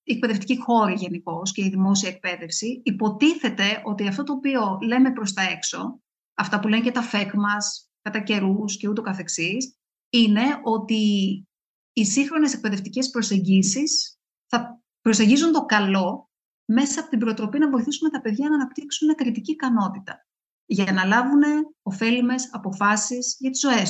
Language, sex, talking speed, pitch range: Greek, female, 150 wpm, 195-255 Hz